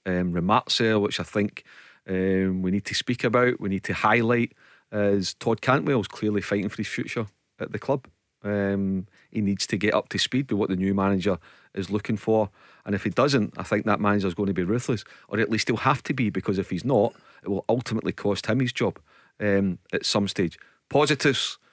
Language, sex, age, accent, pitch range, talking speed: English, male, 40-59, British, 95-115 Hz, 225 wpm